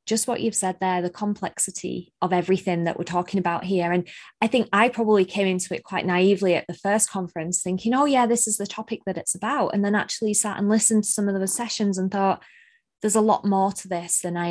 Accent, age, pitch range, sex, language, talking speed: British, 20-39, 180-215 Hz, female, English, 245 wpm